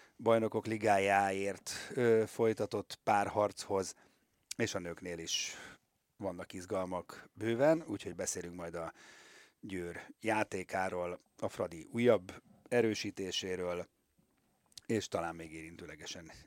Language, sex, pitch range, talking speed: Hungarian, male, 85-110 Hz, 90 wpm